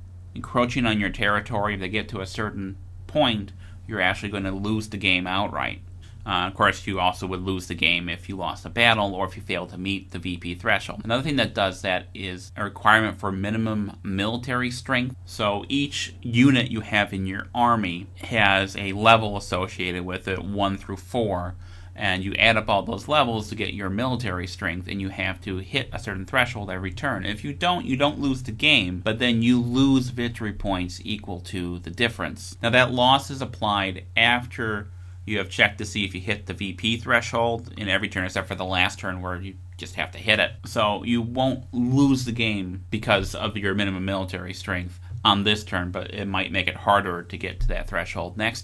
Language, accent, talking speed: English, American, 210 wpm